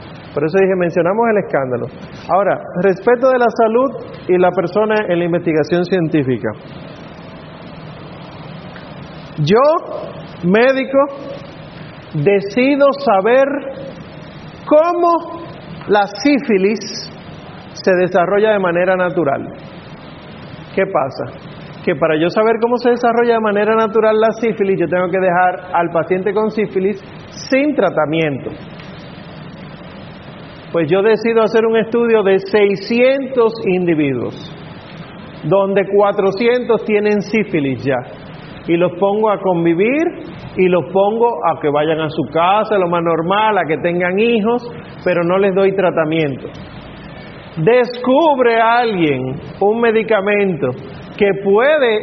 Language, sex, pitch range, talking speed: Spanish, male, 170-220 Hz, 115 wpm